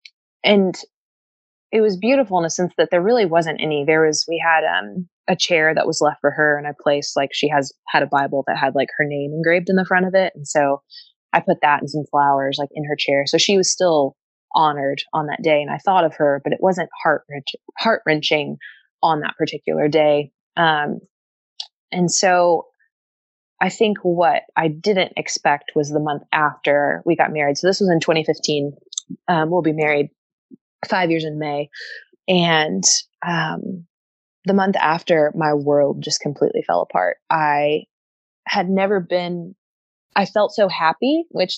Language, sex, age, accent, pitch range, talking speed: English, female, 20-39, American, 150-185 Hz, 185 wpm